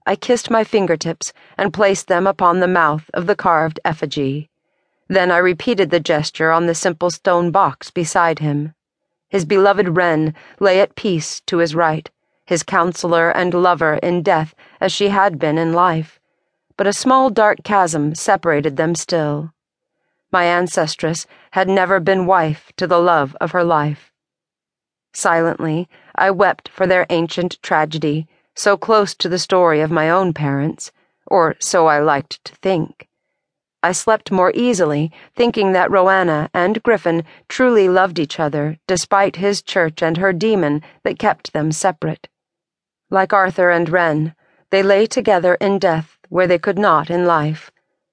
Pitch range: 160-195 Hz